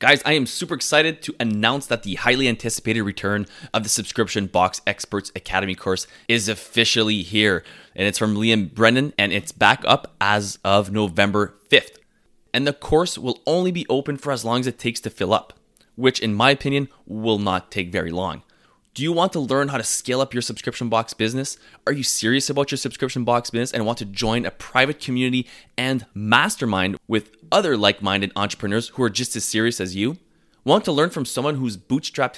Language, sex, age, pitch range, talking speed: English, male, 20-39, 105-135 Hz, 200 wpm